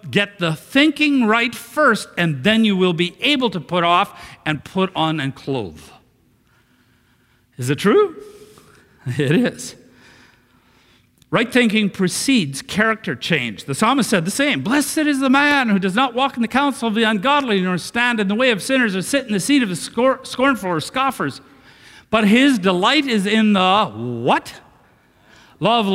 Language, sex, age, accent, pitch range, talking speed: English, male, 50-69, American, 175-255 Hz, 170 wpm